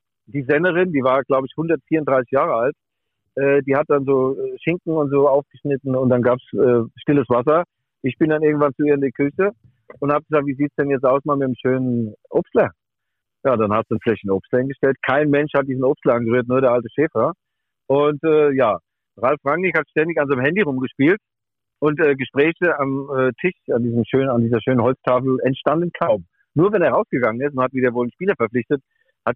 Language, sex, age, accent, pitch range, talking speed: German, male, 50-69, German, 125-150 Hz, 210 wpm